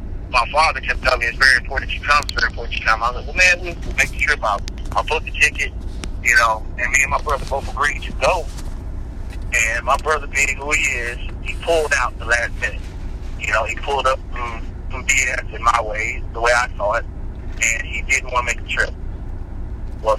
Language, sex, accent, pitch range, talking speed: English, male, American, 90-120 Hz, 240 wpm